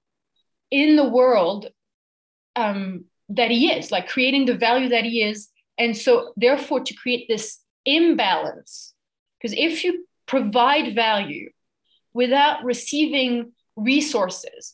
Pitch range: 230-280 Hz